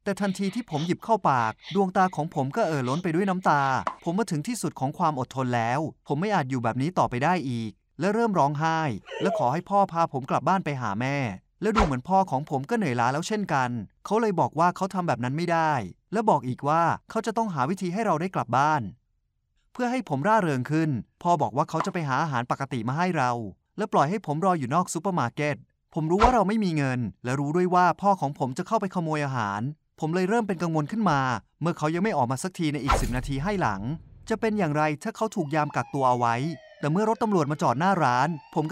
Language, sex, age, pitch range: Thai, male, 20-39, 135-195 Hz